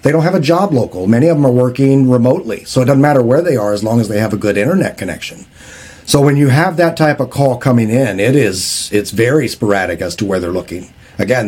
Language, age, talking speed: English, 50-69, 255 wpm